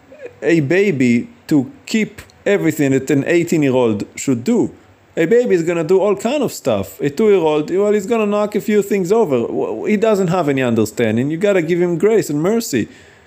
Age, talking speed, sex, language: 40-59, 205 wpm, male, English